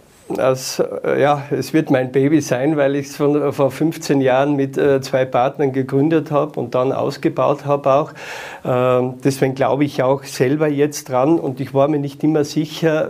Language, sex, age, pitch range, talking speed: German, male, 50-69, 135-155 Hz, 180 wpm